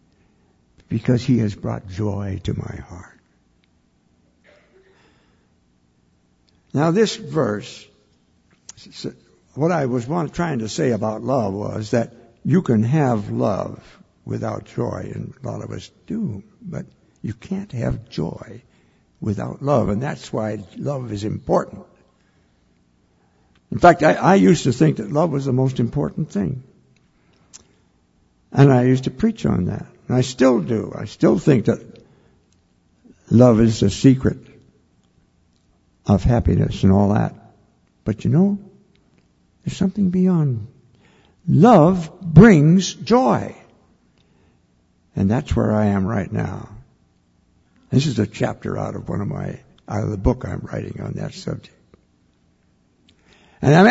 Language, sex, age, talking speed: English, male, 60-79, 135 wpm